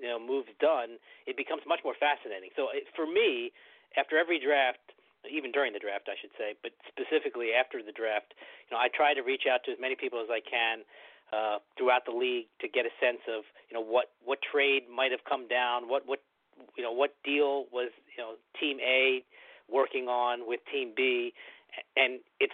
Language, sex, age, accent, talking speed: English, male, 40-59, American, 210 wpm